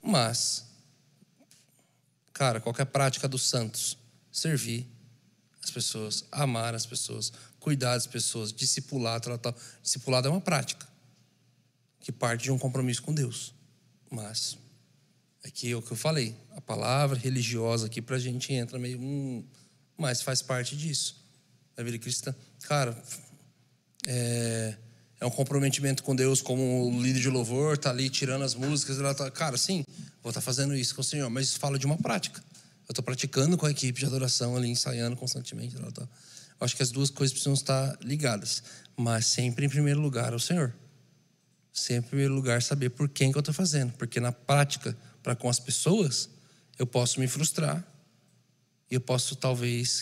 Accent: Brazilian